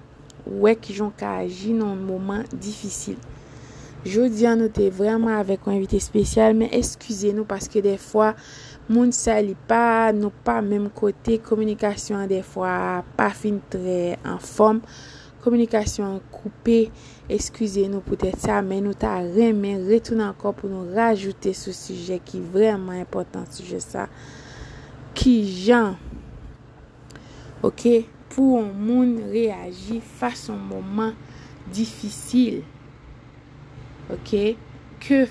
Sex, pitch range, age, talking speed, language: female, 185-225 Hz, 20-39, 125 wpm, French